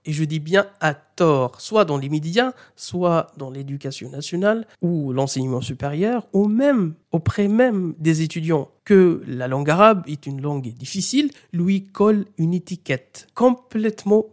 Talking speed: 150 wpm